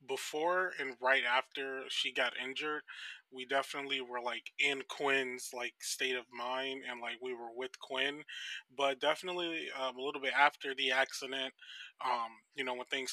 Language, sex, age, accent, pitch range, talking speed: English, male, 20-39, American, 125-140 Hz, 170 wpm